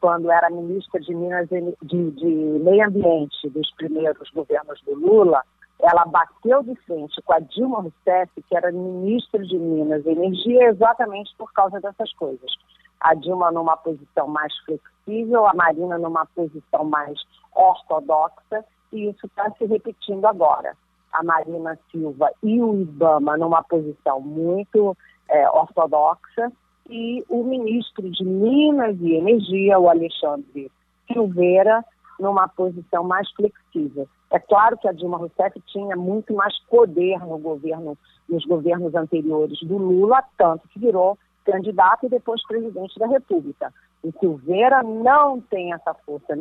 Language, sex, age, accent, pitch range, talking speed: Portuguese, female, 40-59, Brazilian, 165-215 Hz, 140 wpm